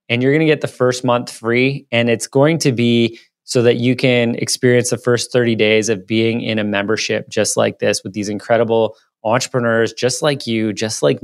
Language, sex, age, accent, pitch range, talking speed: English, male, 20-39, American, 115-145 Hz, 215 wpm